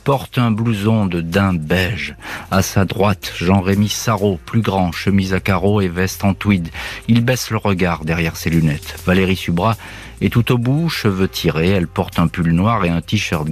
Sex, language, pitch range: male, French, 85-110 Hz